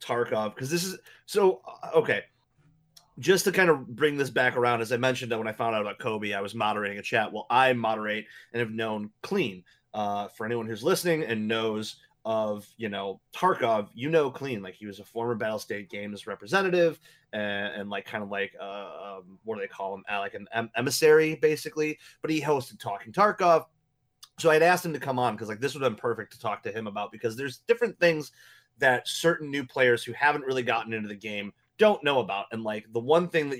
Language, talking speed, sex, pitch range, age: English, 220 wpm, male, 110-155 Hz, 30-49